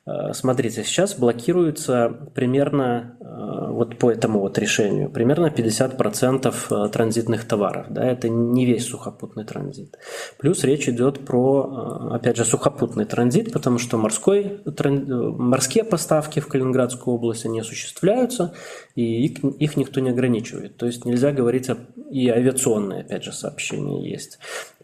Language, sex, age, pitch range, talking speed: Russian, male, 20-39, 115-140 Hz, 130 wpm